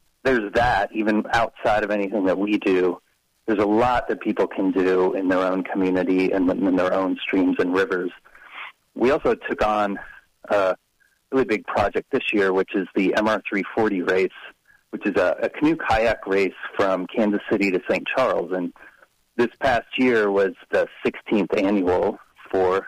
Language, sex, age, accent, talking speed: English, male, 30-49, American, 165 wpm